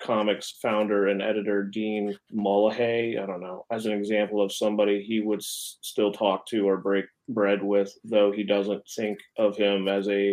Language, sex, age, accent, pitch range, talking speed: English, male, 30-49, American, 100-115 Hz, 180 wpm